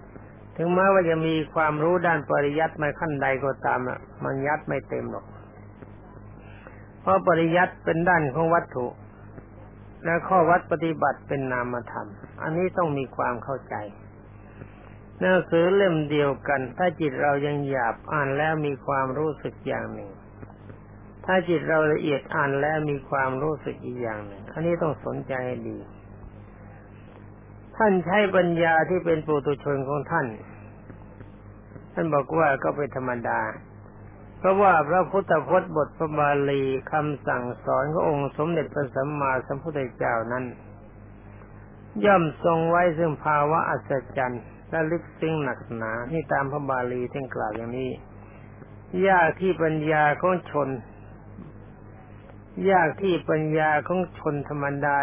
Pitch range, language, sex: 105-160 Hz, Thai, male